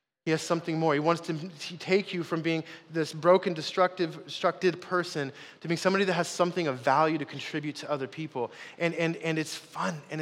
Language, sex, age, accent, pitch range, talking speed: English, male, 20-39, American, 150-180 Hz, 205 wpm